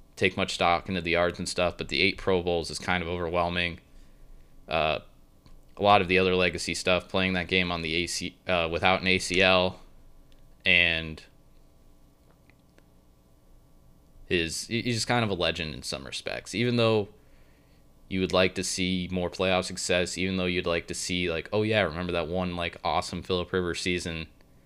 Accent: American